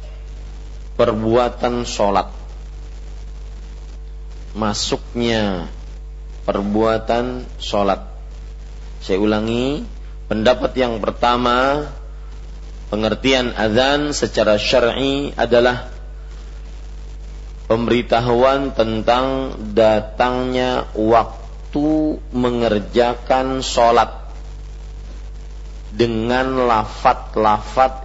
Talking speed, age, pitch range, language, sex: 50 wpm, 40-59, 75-125 Hz, Malay, male